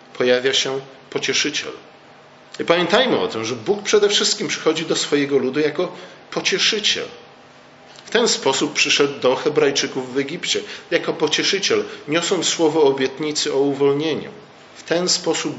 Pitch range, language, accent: 130-170 Hz, Polish, native